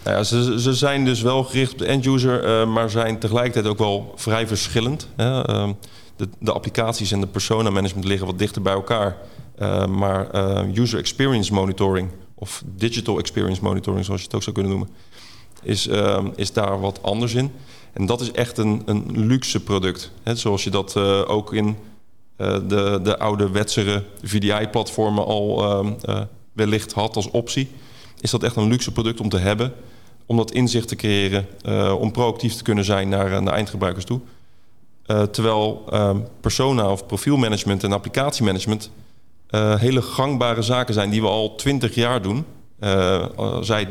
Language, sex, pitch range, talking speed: Dutch, male, 100-120 Hz, 180 wpm